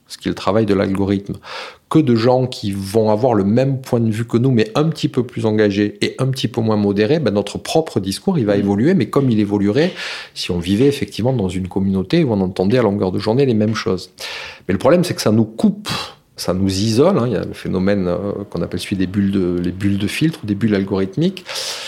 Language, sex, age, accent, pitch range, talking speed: French, male, 40-59, French, 100-125 Hz, 245 wpm